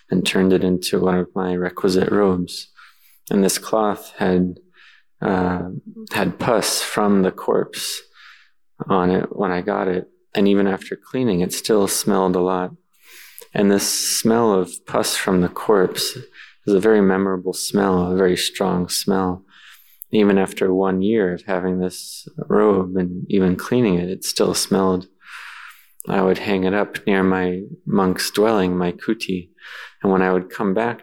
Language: English